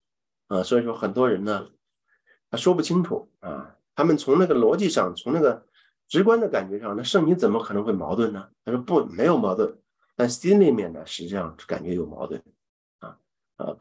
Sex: male